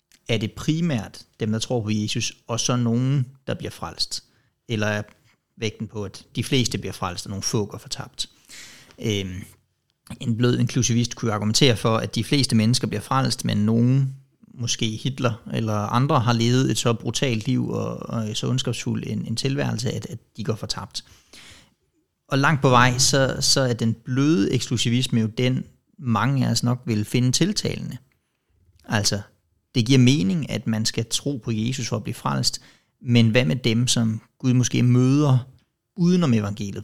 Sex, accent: male, native